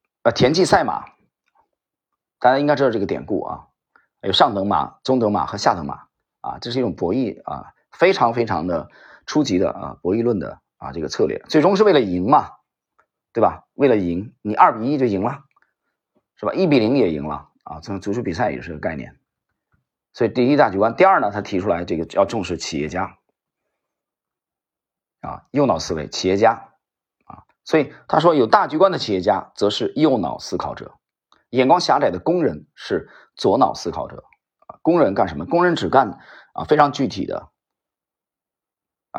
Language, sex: Chinese, male